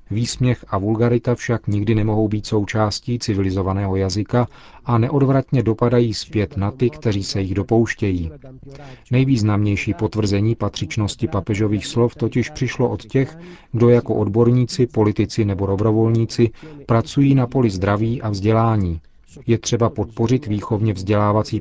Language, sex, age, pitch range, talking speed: Czech, male, 40-59, 105-120 Hz, 130 wpm